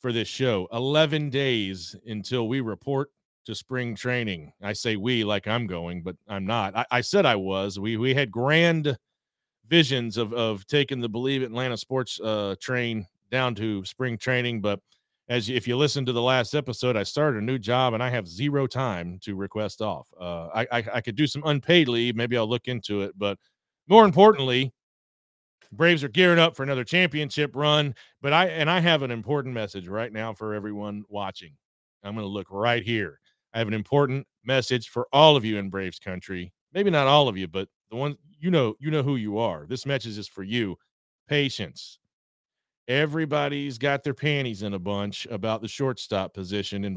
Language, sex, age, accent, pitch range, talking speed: English, male, 40-59, American, 105-135 Hz, 200 wpm